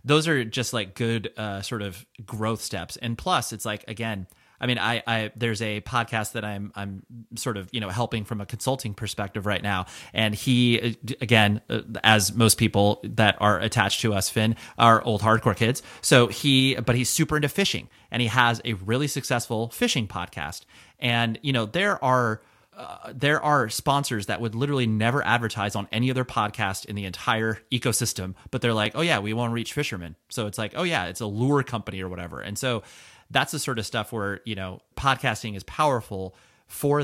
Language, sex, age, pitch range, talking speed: English, male, 30-49, 105-125 Hz, 200 wpm